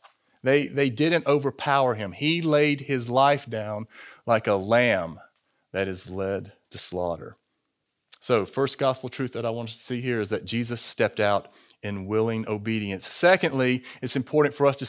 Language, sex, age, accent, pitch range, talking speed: English, male, 40-59, American, 115-145 Hz, 175 wpm